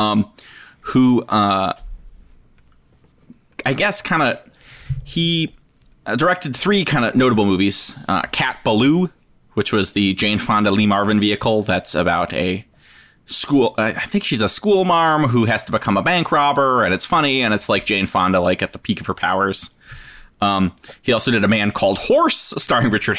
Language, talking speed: English, 175 wpm